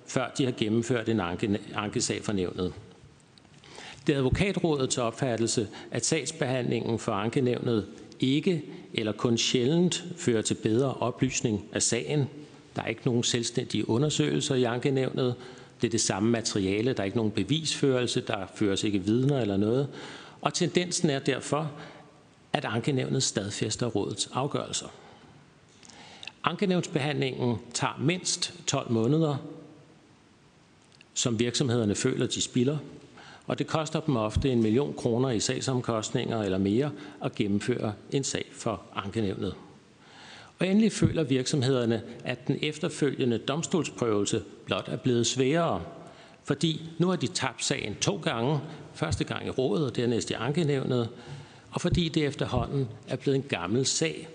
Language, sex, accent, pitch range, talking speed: Danish, male, native, 115-150 Hz, 135 wpm